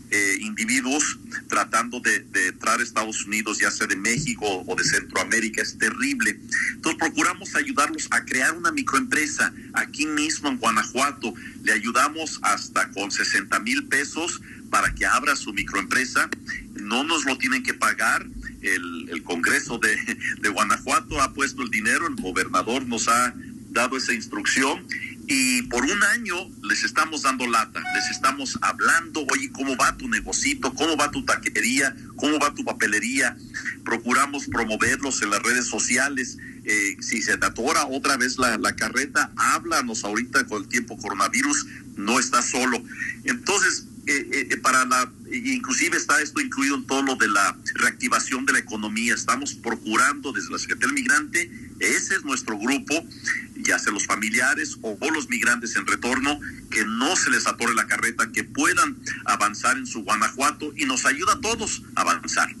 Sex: male